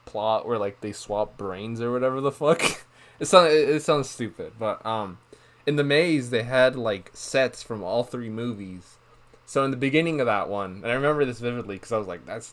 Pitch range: 110-140 Hz